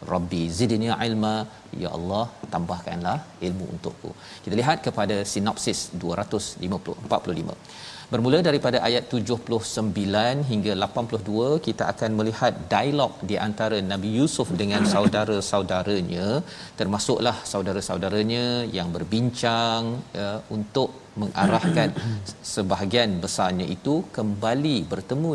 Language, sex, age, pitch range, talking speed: Malayalam, male, 40-59, 100-120 Hz, 100 wpm